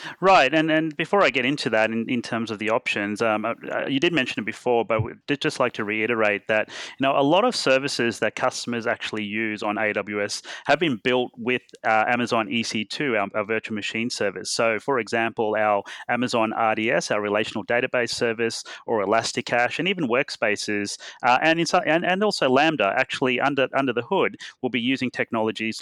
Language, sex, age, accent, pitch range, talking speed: English, male, 30-49, Australian, 110-130 Hz, 195 wpm